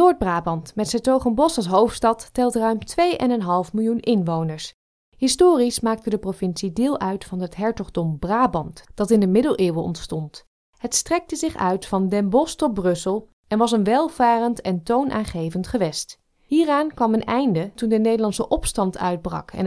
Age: 20-39